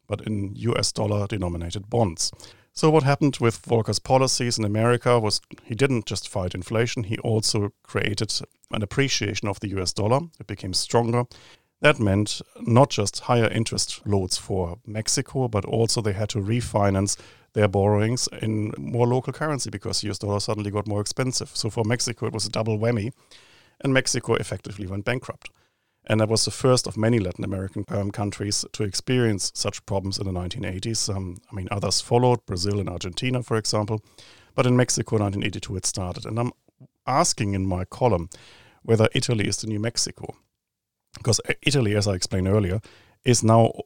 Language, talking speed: English, 170 wpm